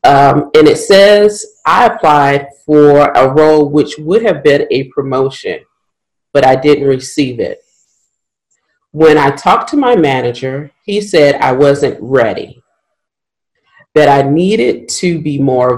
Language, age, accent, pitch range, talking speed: English, 40-59, American, 140-180 Hz, 140 wpm